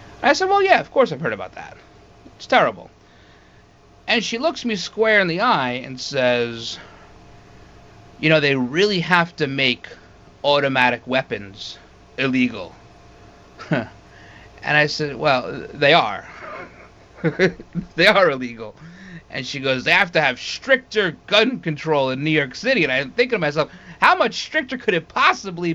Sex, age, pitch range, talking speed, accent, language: male, 30-49, 140-230 Hz, 155 wpm, American, English